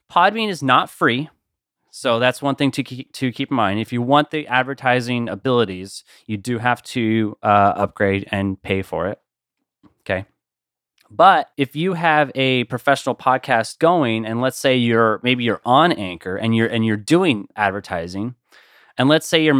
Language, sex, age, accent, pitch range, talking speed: English, male, 30-49, American, 105-135 Hz, 175 wpm